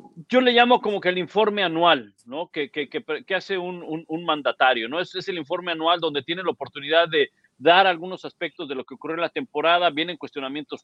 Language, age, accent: Spanish, 50-69, Mexican